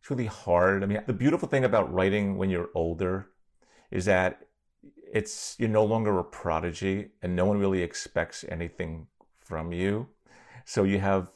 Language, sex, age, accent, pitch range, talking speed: English, male, 40-59, American, 90-105 Hz, 170 wpm